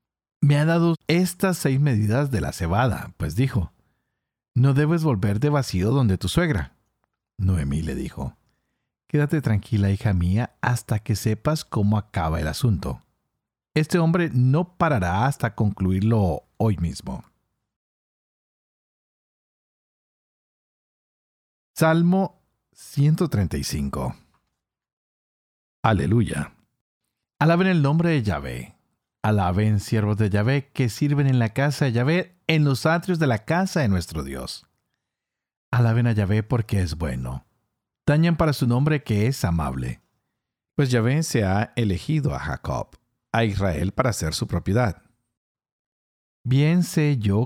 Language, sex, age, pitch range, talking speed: Spanish, male, 50-69, 100-145 Hz, 125 wpm